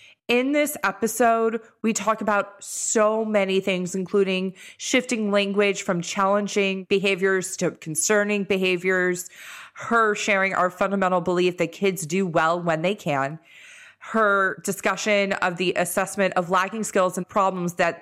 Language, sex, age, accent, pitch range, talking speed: English, female, 30-49, American, 170-200 Hz, 135 wpm